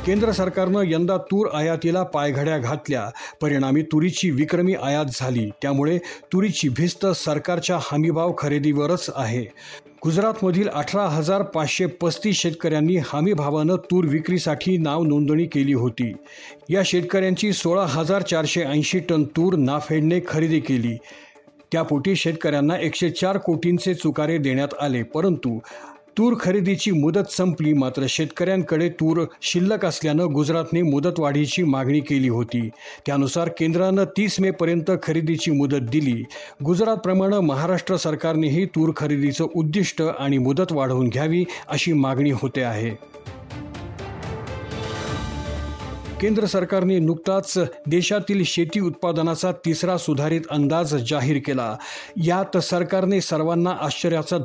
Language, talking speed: Marathi, 110 wpm